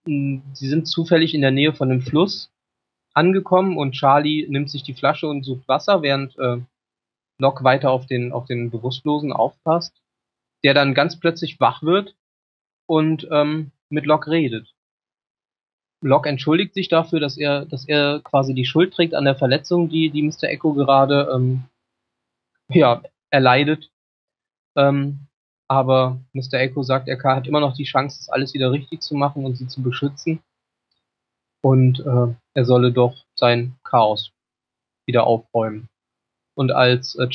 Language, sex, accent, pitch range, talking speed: German, male, German, 130-155 Hz, 155 wpm